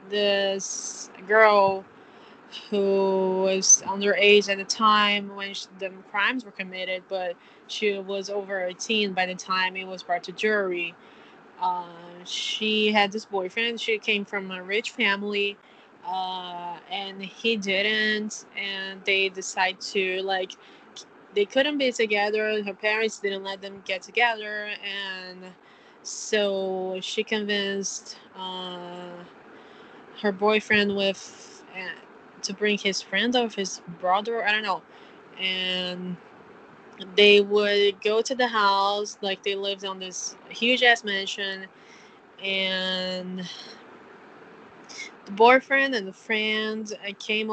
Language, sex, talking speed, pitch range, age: English, female, 125 wpm, 190-215 Hz, 20-39